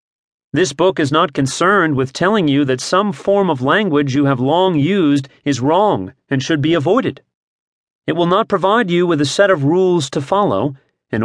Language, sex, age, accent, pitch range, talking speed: English, male, 40-59, American, 135-180 Hz, 190 wpm